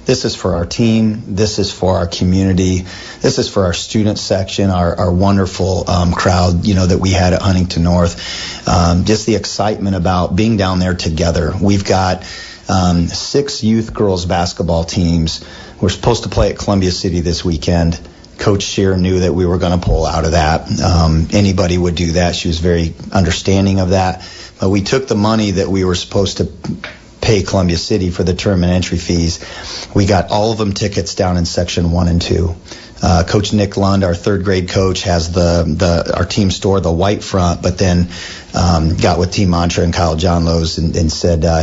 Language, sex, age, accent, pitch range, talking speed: English, male, 40-59, American, 85-100 Hz, 205 wpm